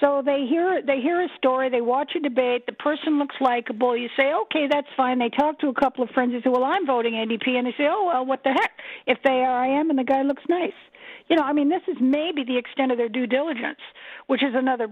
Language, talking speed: English, 280 wpm